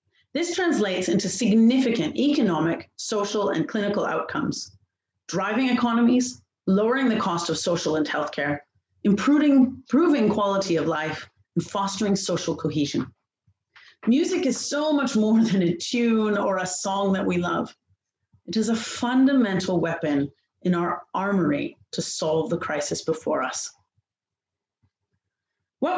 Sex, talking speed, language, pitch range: female, 130 wpm, English, 165-245 Hz